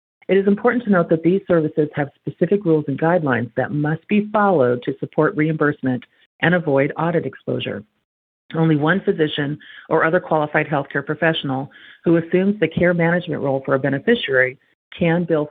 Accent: American